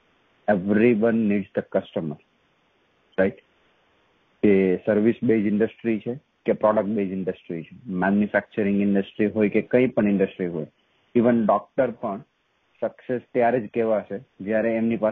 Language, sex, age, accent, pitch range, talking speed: English, male, 40-59, Indian, 100-120 Hz, 115 wpm